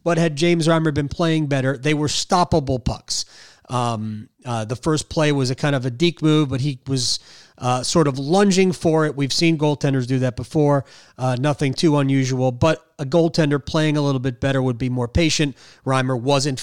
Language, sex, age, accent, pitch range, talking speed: English, male, 30-49, American, 130-170 Hz, 200 wpm